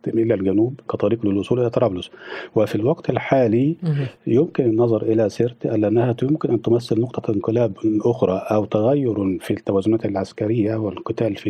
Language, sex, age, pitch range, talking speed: Arabic, male, 50-69, 105-125 Hz, 140 wpm